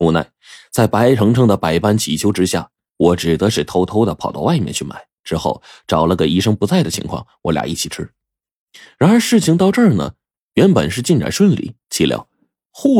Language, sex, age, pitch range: Chinese, male, 20-39, 85-115 Hz